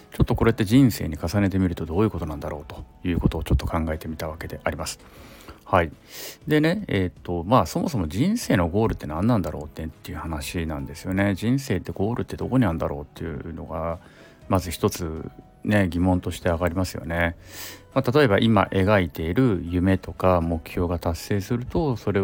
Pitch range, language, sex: 85-115 Hz, Japanese, male